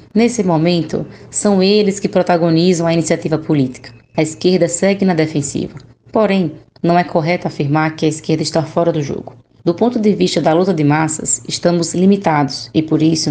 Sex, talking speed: female, 175 wpm